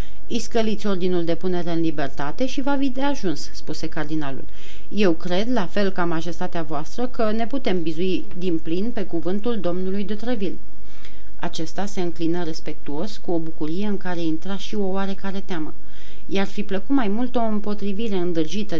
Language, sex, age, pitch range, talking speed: Romanian, female, 30-49, 165-205 Hz, 170 wpm